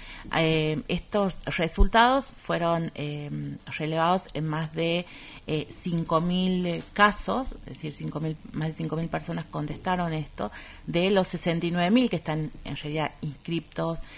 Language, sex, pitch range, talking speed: Spanish, female, 155-195 Hz, 125 wpm